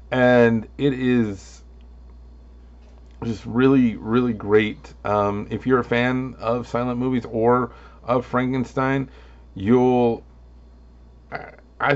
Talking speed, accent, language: 100 wpm, American, English